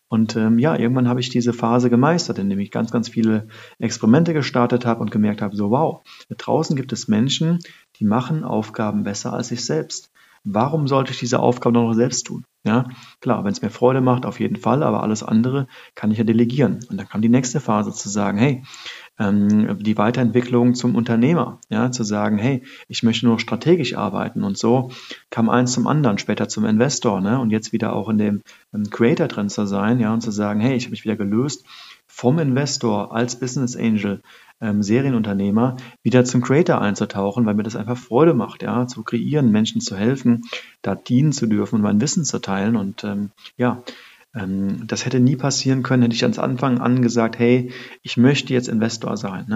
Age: 40-59